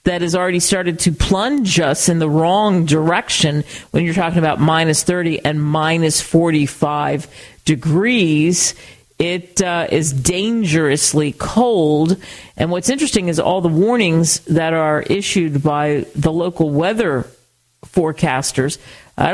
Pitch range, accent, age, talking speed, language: 150-190 Hz, American, 50-69, 130 wpm, English